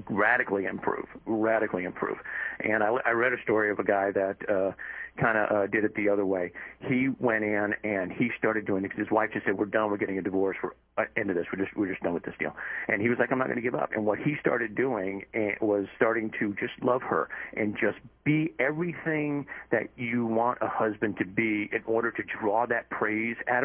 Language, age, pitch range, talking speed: English, 50-69, 100-130 Hz, 240 wpm